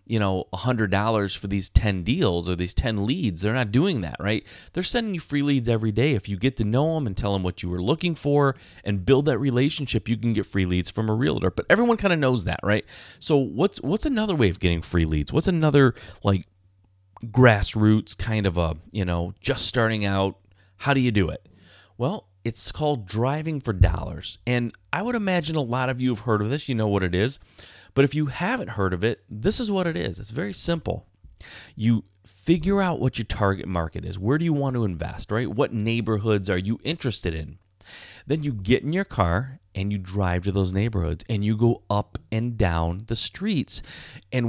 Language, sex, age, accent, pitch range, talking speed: English, male, 30-49, American, 95-135 Hz, 220 wpm